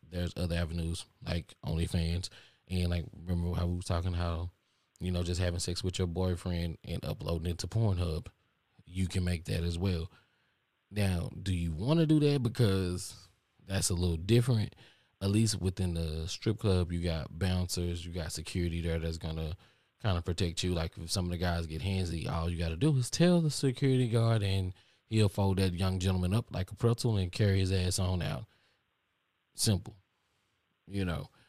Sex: male